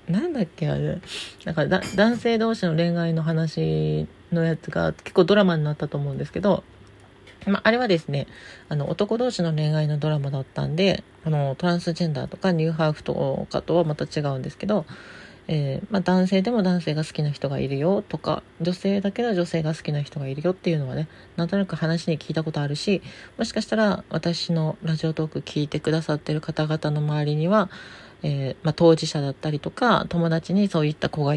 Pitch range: 150-195 Hz